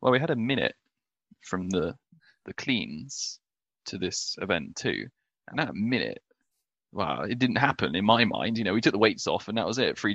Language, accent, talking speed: English, British, 205 wpm